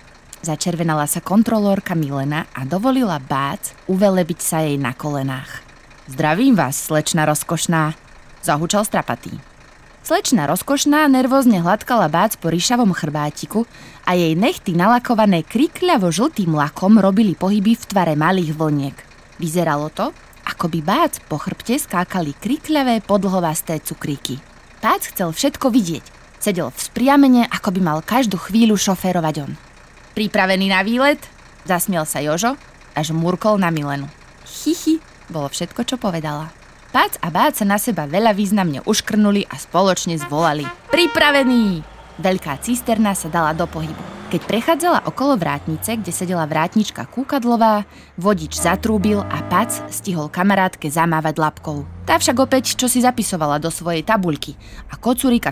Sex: female